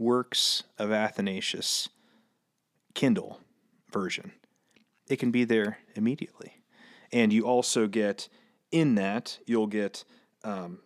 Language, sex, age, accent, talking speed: English, male, 30-49, American, 105 wpm